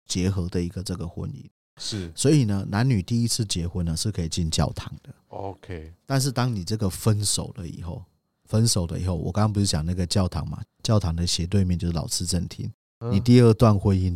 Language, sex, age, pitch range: Chinese, male, 30-49, 85-110 Hz